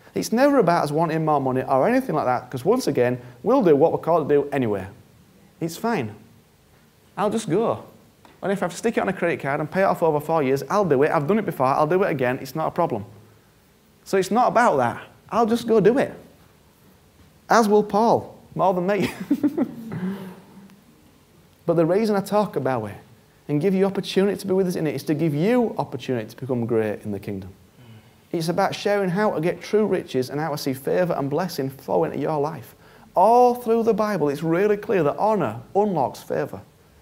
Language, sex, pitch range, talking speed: English, male, 125-195 Hz, 215 wpm